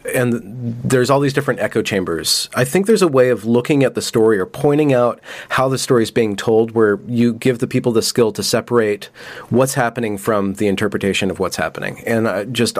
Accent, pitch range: American, 105-125 Hz